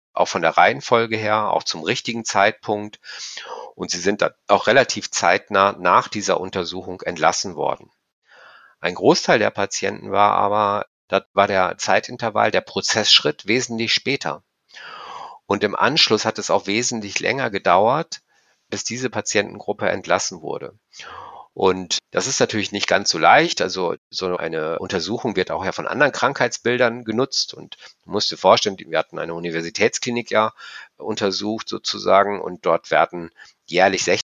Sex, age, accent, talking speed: male, 50-69, German, 145 wpm